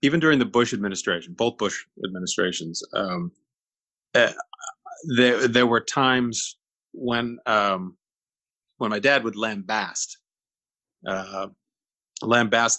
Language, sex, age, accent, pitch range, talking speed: English, male, 30-49, American, 95-125 Hz, 110 wpm